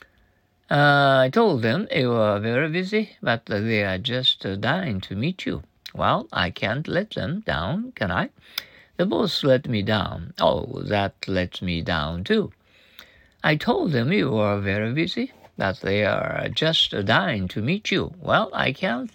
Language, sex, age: Japanese, male, 50-69